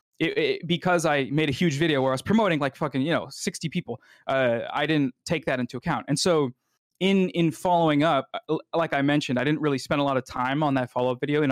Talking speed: 245 wpm